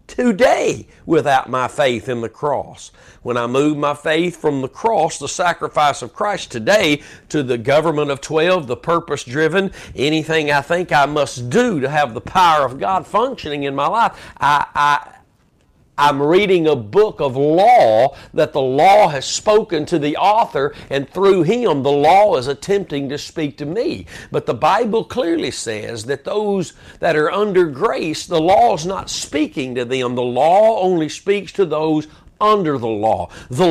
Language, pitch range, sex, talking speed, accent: English, 130-185 Hz, male, 175 wpm, American